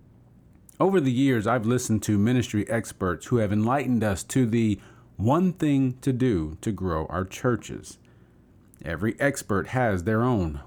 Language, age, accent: English, 40-59, American